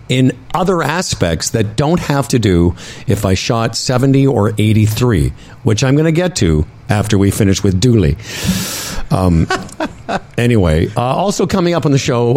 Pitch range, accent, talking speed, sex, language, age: 100-140 Hz, American, 165 wpm, male, English, 50-69